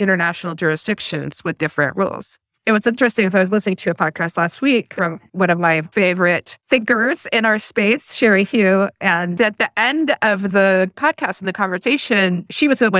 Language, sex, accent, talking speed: English, female, American, 190 wpm